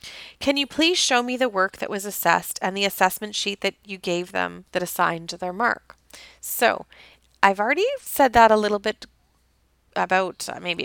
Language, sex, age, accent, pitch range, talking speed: English, female, 30-49, American, 185-235 Hz, 175 wpm